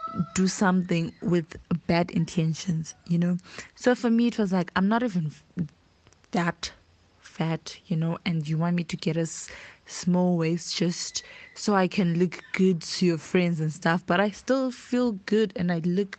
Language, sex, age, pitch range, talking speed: English, female, 20-39, 170-210 Hz, 180 wpm